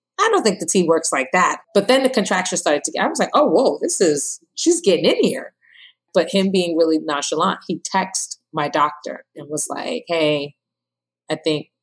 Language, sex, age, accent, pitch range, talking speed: English, female, 30-49, American, 140-205 Hz, 210 wpm